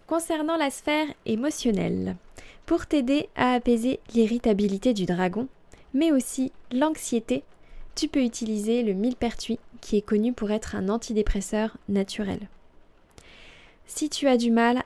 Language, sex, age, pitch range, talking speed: French, female, 20-39, 200-245 Hz, 130 wpm